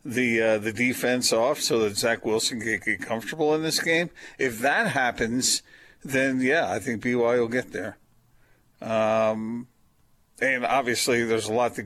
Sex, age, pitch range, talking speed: male, 50-69, 110-125 Hz, 165 wpm